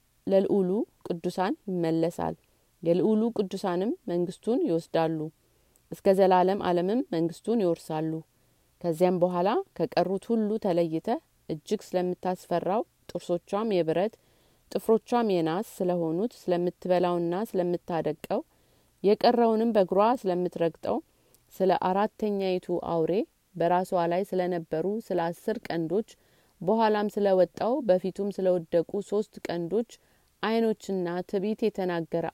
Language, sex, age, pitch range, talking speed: Amharic, female, 30-49, 170-210 Hz, 85 wpm